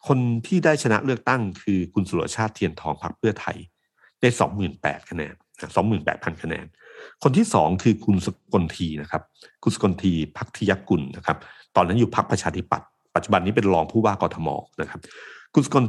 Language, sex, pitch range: Thai, male, 90-115 Hz